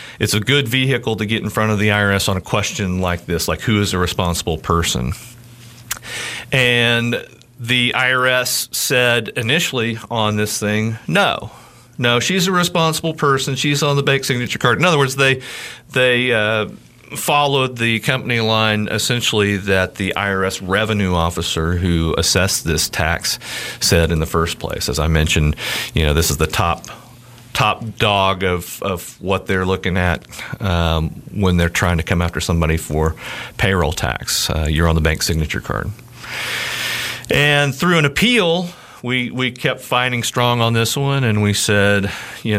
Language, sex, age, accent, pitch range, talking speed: English, male, 40-59, American, 85-120 Hz, 165 wpm